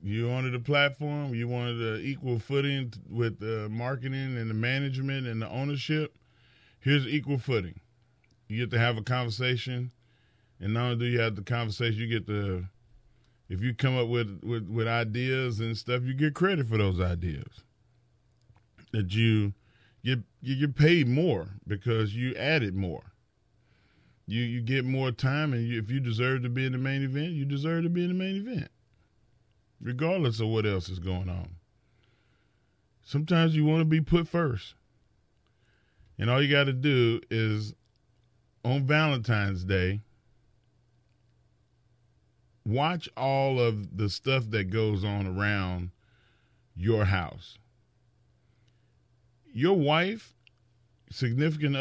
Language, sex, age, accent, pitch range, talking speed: English, male, 40-59, American, 110-135 Hz, 145 wpm